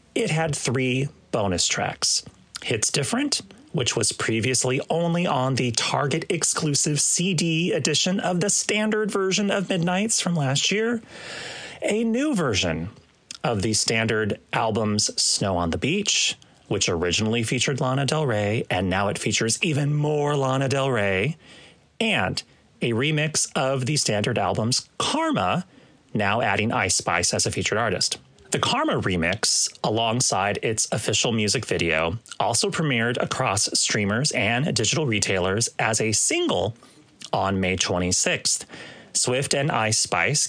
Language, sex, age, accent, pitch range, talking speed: English, male, 30-49, American, 110-165 Hz, 135 wpm